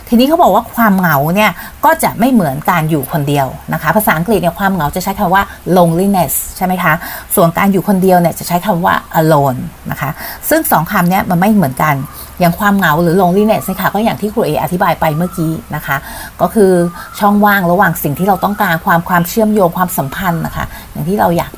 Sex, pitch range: female, 170-210 Hz